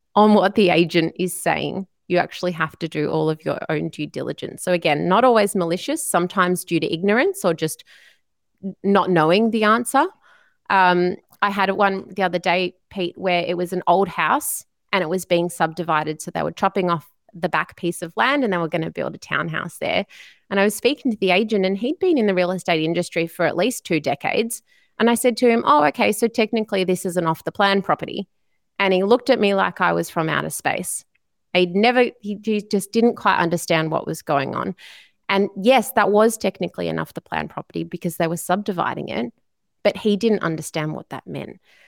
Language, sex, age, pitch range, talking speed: English, female, 30-49, 175-220 Hz, 210 wpm